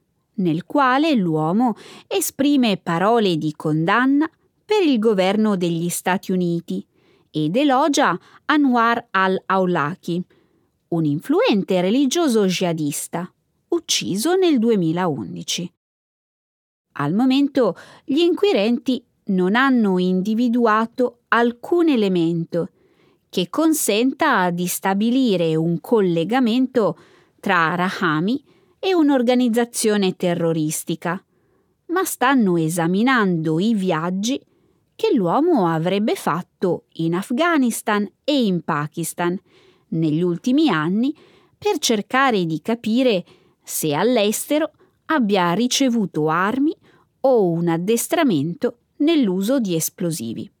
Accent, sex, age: native, female, 20-39